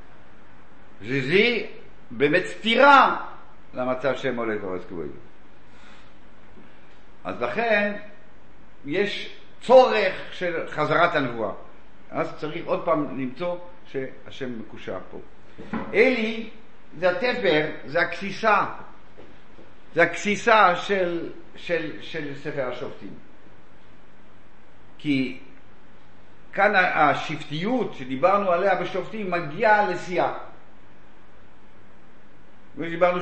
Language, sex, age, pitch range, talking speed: Hebrew, male, 50-69, 155-220 Hz, 75 wpm